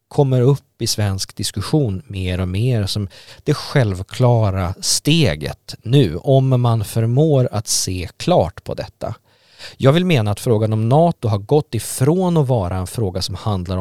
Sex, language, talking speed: male, Swedish, 160 wpm